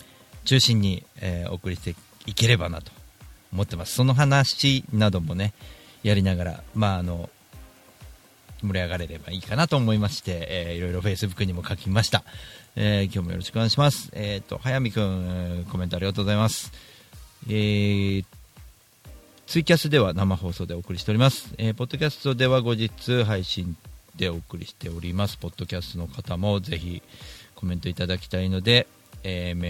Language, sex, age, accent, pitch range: Japanese, male, 40-59, native, 90-110 Hz